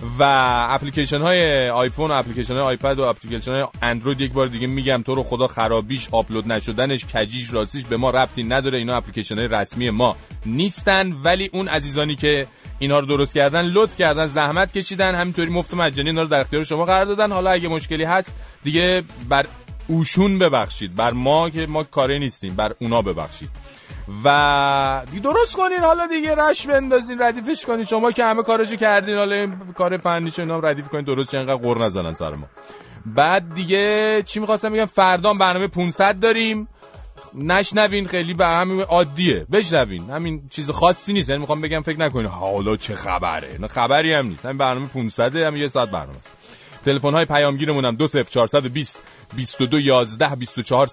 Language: Persian